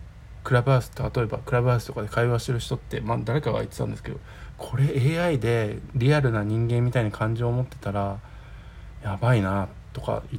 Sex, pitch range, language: male, 105-135 Hz, Japanese